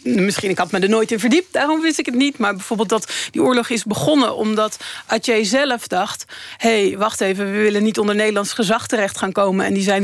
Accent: Dutch